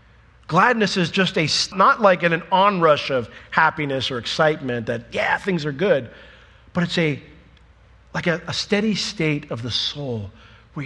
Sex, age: male, 50-69